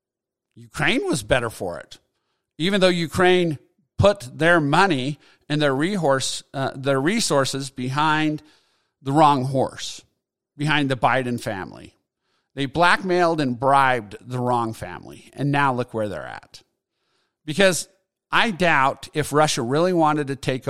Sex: male